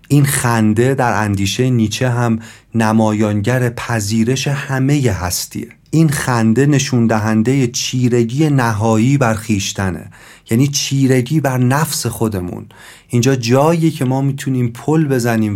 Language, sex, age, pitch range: Persian, male, 40-59, 110-135 Hz